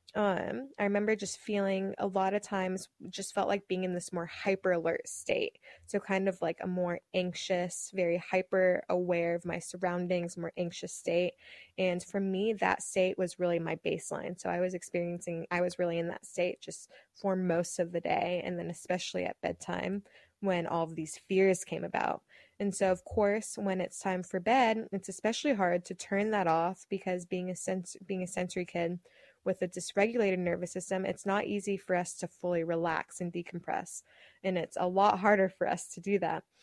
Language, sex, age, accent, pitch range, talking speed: English, female, 20-39, American, 175-200 Hz, 200 wpm